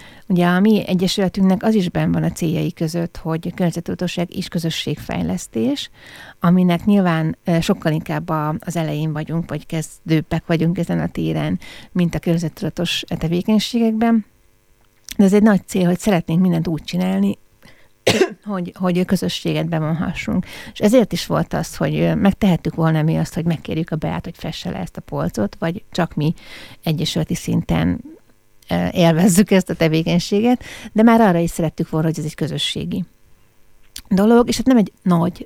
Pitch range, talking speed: 160-195 Hz, 155 wpm